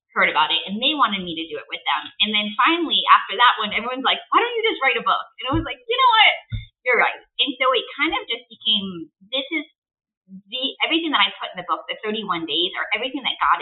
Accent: American